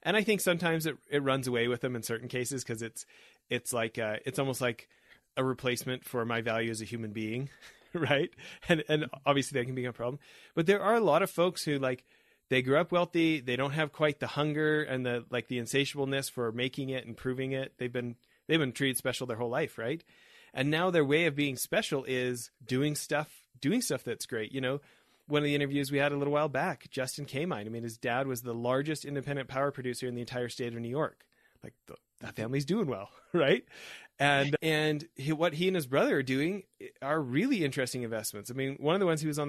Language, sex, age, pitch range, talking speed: English, male, 30-49, 120-150 Hz, 235 wpm